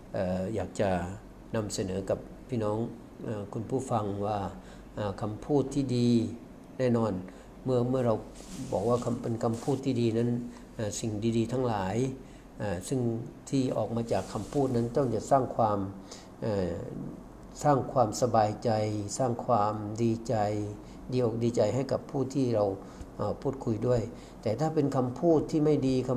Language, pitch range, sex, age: Thai, 105-130 Hz, male, 60-79